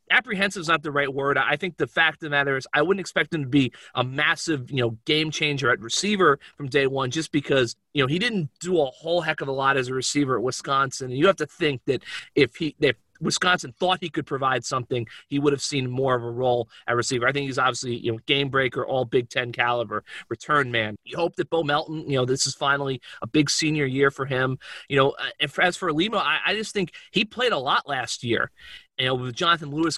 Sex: male